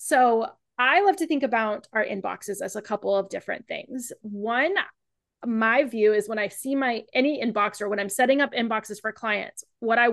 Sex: female